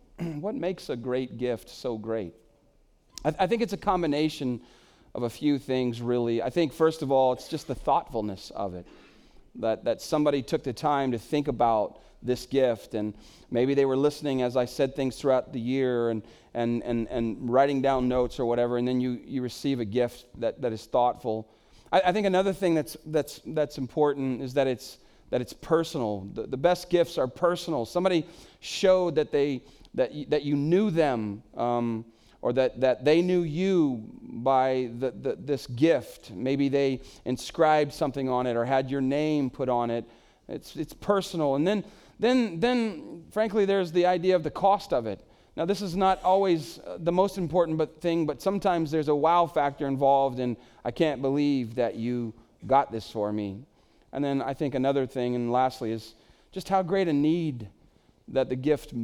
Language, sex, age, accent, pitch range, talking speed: English, male, 40-59, American, 120-165 Hz, 190 wpm